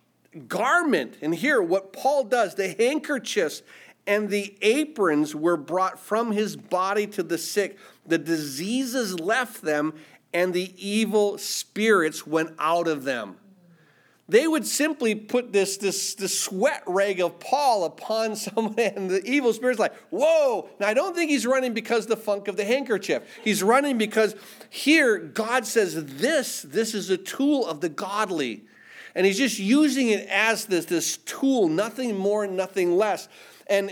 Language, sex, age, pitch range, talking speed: English, male, 50-69, 180-235 Hz, 160 wpm